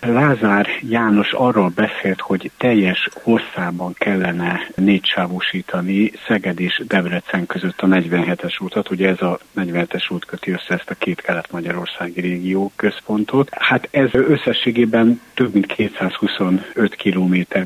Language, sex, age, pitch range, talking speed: Hungarian, male, 60-79, 90-110 Hz, 120 wpm